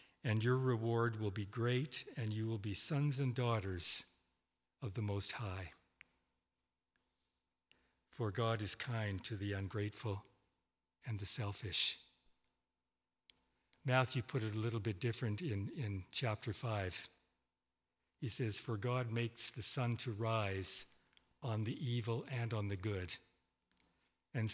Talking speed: 135 wpm